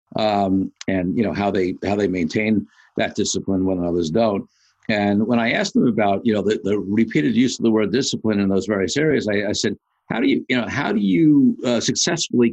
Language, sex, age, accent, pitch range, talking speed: English, male, 50-69, American, 95-115 Hz, 225 wpm